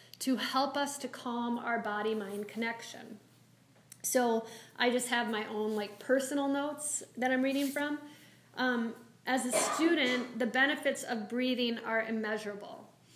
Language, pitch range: English, 220-260 Hz